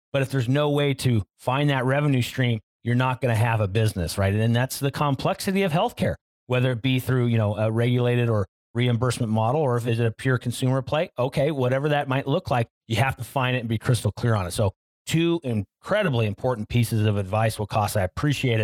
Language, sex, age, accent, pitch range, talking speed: English, male, 40-59, American, 105-135 Hz, 225 wpm